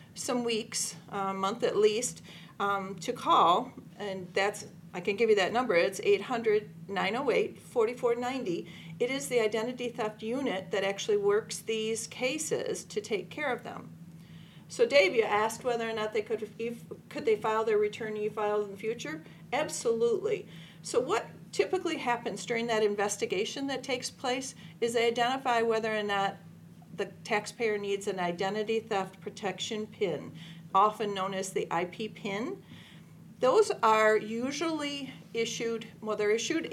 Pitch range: 190-240 Hz